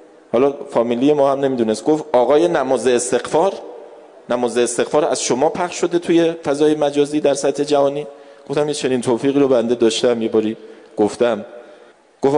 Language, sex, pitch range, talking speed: Persian, male, 115-150 Hz, 150 wpm